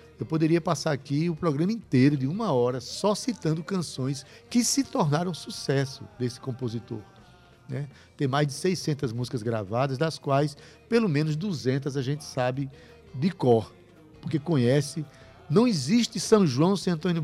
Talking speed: 155 wpm